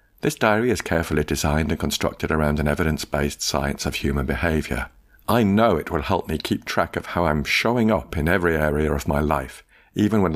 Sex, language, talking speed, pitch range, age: male, English, 205 wpm, 75-90 Hz, 50-69